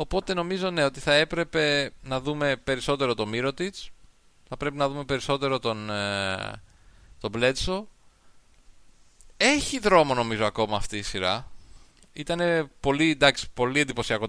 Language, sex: Greek, male